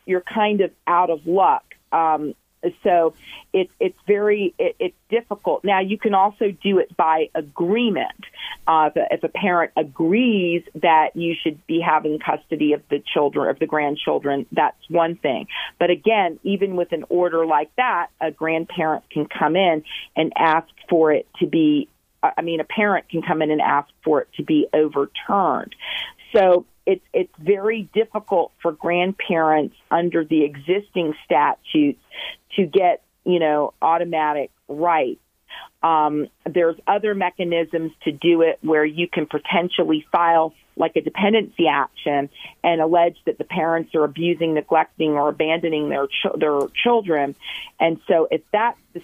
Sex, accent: female, American